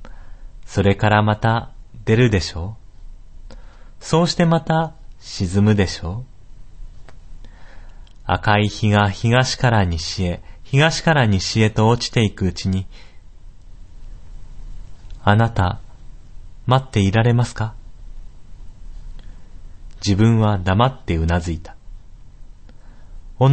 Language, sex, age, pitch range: Japanese, male, 40-59, 90-120 Hz